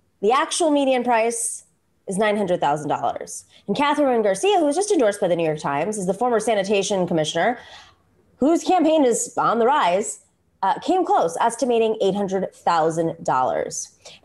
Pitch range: 215-355 Hz